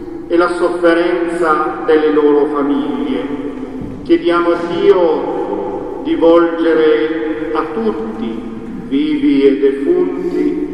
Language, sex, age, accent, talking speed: Italian, male, 50-69, native, 90 wpm